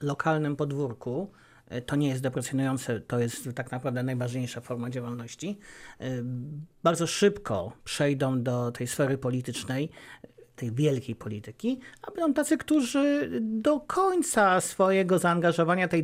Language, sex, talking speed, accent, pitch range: Polish, male, 120 wpm, native, 150-215 Hz